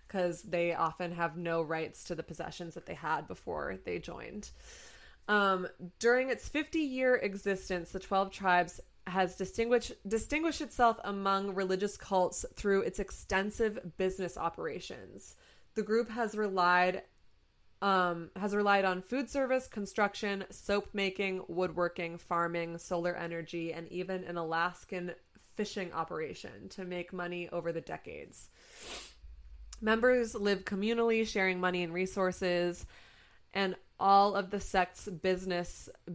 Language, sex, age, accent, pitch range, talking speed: English, female, 20-39, American, 175-205 Hz, 130 wpm